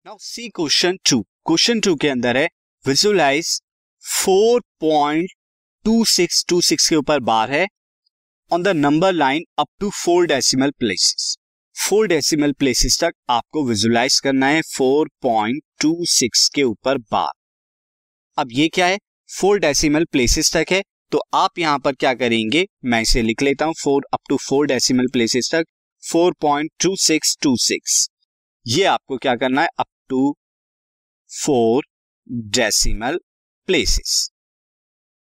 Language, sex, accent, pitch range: Hindi, male, native, 135-180 Hz